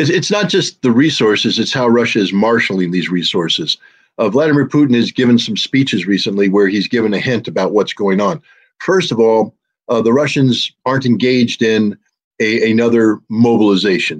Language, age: English, 50-69